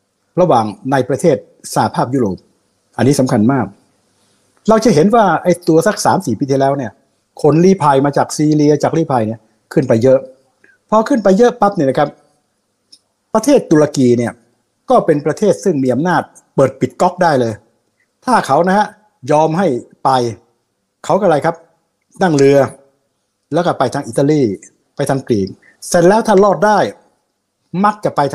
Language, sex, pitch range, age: Thai, male, 125-180 Hz, 60-79